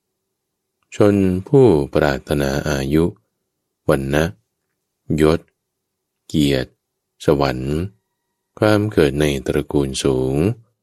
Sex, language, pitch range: male, Thai, 70-90 Hz